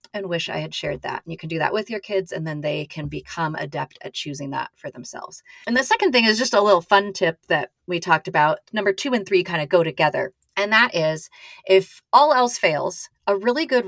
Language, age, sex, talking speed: English, 30-49, female, 245 wpm